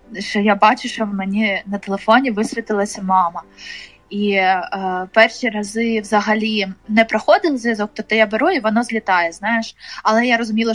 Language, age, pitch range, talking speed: Ukrainian, 20-39, 195-235 Hz, 160 wpm